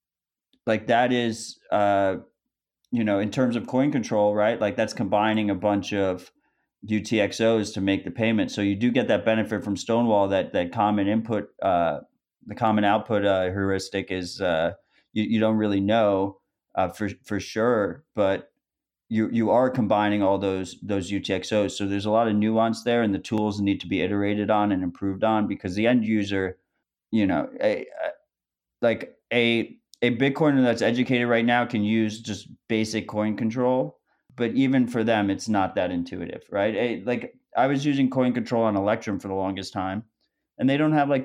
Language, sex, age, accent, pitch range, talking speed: English, male, 30-49, American, 100-115 Hz, 185 wpm